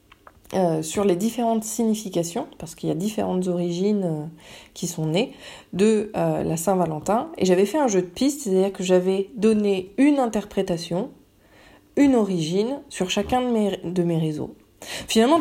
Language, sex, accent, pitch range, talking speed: French, female, French, 180-230 Hz, 165 wpm